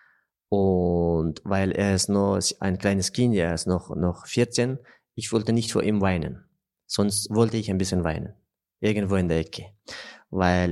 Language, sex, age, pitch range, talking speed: German, male, 30-49, 95-115 Hz, 170 wpm